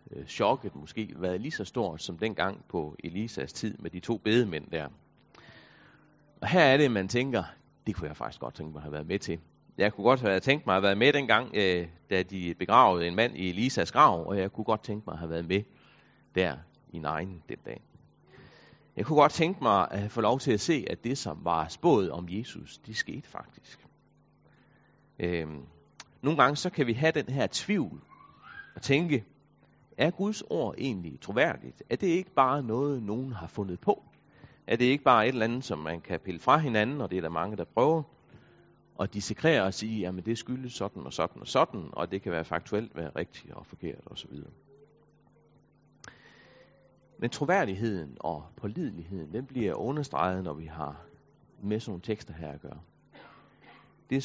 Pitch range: 90-135 Hz